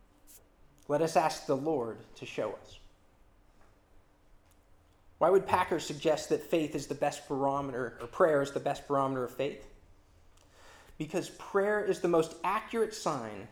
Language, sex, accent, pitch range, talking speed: English, male, American, 115-180 Hz, 145 wpm